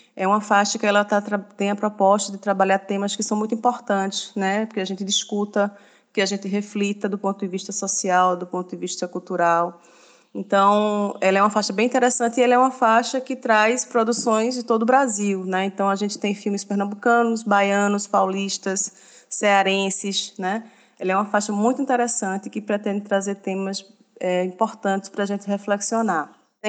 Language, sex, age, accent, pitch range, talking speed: Portuguese, female, 20-39, Brazilian, 195-220 Hz, 185 wpm